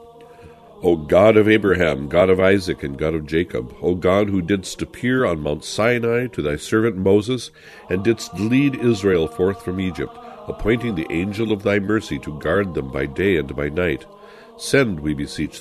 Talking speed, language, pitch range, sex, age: 180 wpm, English, 85-115 Hz, male, 60-79